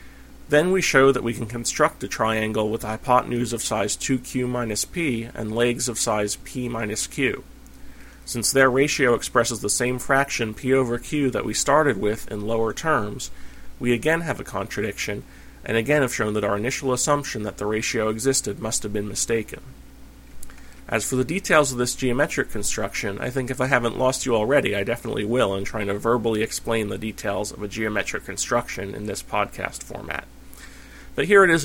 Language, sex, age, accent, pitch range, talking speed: English, male, 30-49, American, 105-130 Hz, 190 wpm